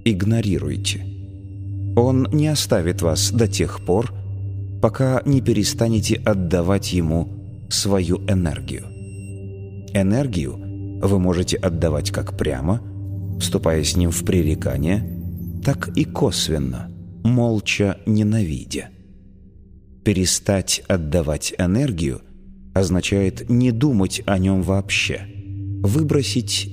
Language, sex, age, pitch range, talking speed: Russian, male, 30-49, 90-110 Hz, 90 wpm